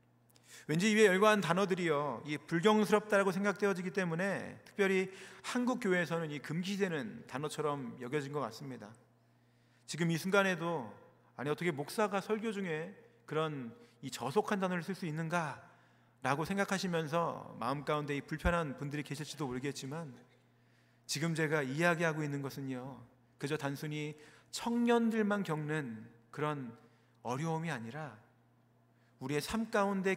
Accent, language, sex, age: native, Korean, male, 40-59